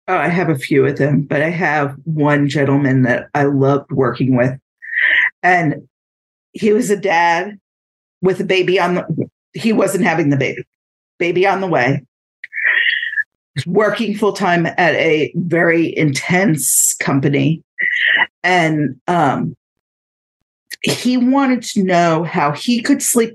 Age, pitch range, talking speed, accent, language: 50-69, 150-210 Hz, 140 wpm, American, English